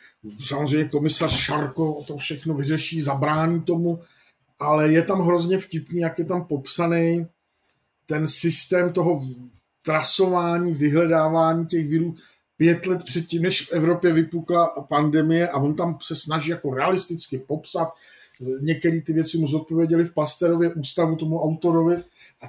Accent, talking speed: native, 135 wpm